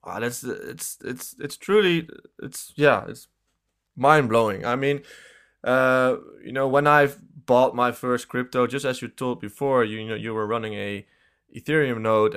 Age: 20-39